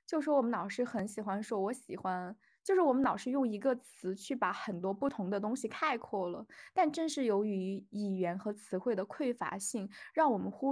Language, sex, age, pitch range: Chinese, female, 20-39, 205-265 Hz